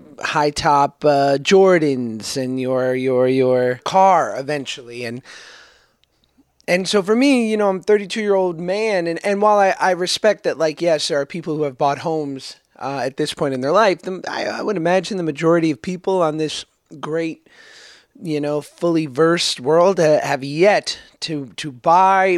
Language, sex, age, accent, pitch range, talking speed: English, male, 30-49, American, 140-195 Hz, 180 wpm